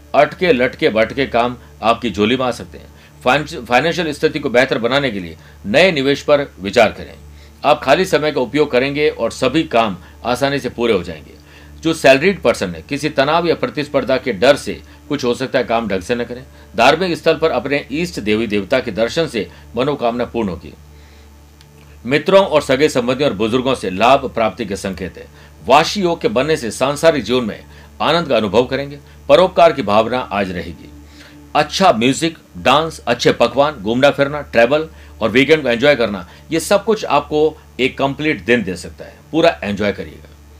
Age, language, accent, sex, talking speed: 50-69, Hindi, native, male, 115 wpm